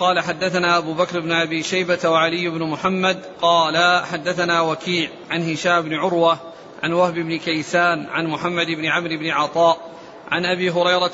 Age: 40-59